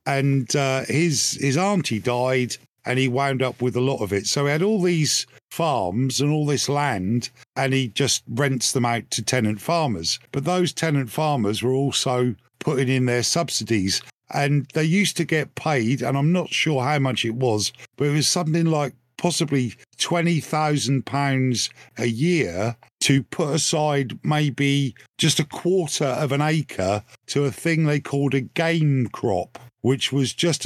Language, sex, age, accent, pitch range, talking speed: English, male, 50-69, British, 125-150 Hz, 170 wpm